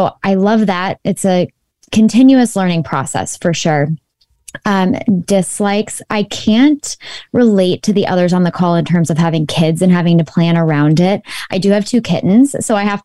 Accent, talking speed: American, 185 wpm